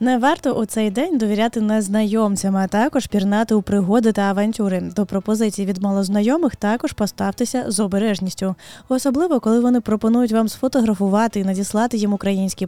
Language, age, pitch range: Ukrainian, 10-29, 190-245 Hz